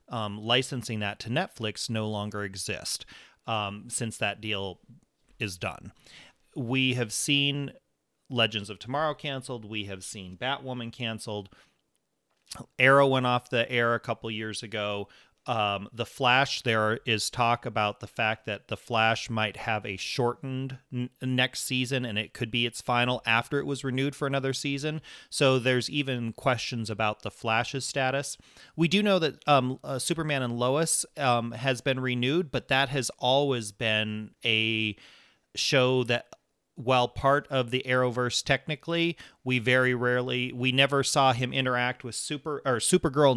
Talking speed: 155 wpm